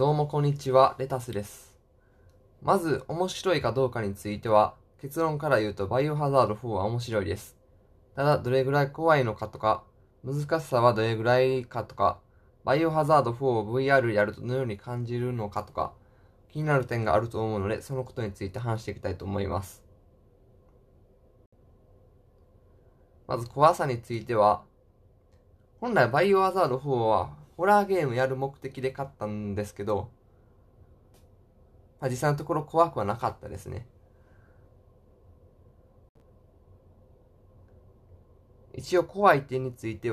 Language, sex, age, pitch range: Japanese, male, 20-39, 100-130 Hz